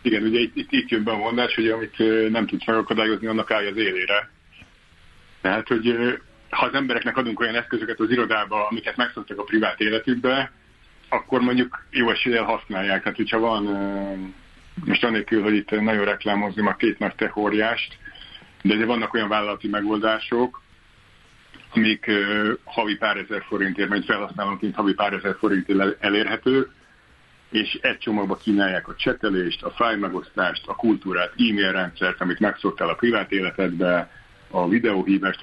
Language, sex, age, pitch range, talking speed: Hungarian, male, 50-69, 100-115 Hz, 145 wpm